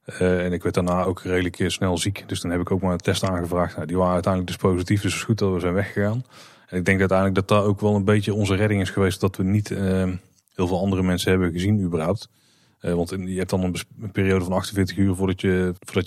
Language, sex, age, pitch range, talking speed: Dutch, male, 30-49, 90-105 Hz, 265 wpm